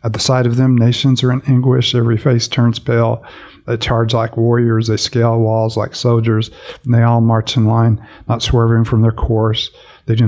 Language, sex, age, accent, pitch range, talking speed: English, male, 50-69, American, 110-120 Hz, 205 wpm